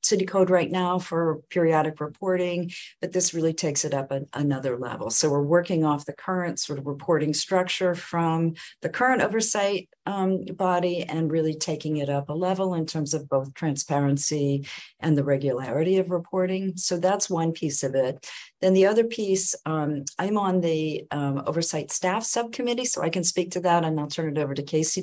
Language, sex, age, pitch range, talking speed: English, female, 50-69, 150-185 Hz, 190 wpm